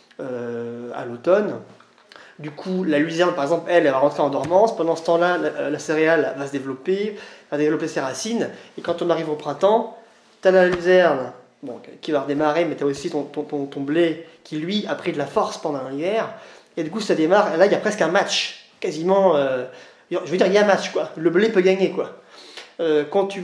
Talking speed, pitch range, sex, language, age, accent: 240 wpm, 150-195 Hz, male, French, 20-39, French